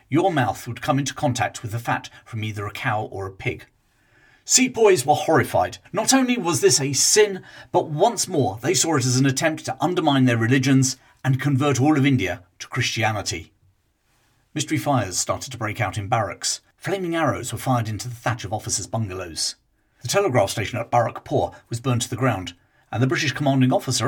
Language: English